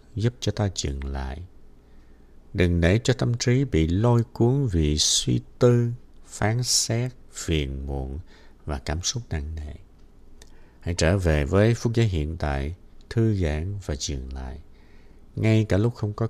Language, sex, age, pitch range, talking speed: Vietnamese, male, 60-79, 75-115 Hz, 160 wpm